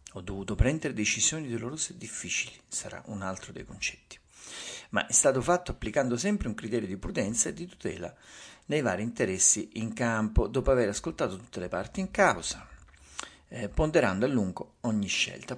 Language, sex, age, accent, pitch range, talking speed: Italian, male, 50-69, native, 95-115 Hz, 170 wpm